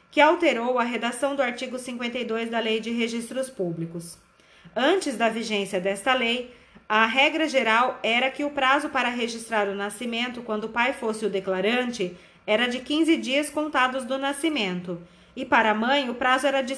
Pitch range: 220-265 Hz